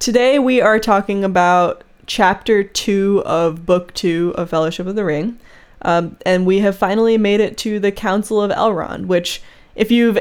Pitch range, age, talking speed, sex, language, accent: 170-205 Hz, 20-39, 175 wpm, female, English, American